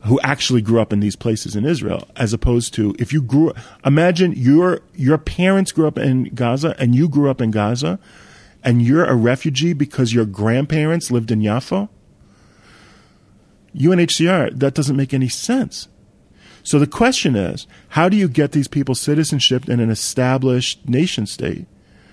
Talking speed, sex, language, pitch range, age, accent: 165 wpm, male, English, 115-155 Hz, 40-59, American